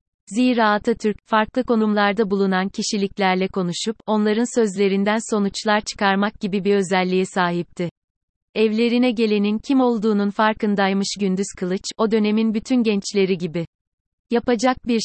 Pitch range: 195-225 Hz